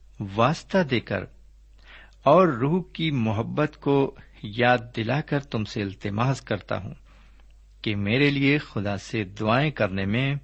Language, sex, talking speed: Urdu, male, 140 wpm